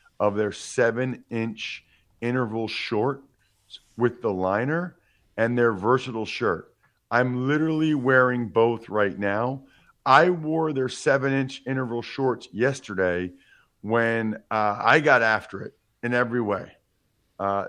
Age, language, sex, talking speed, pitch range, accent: 40-59, English, male, 125 wpm, 105-130 Hz, American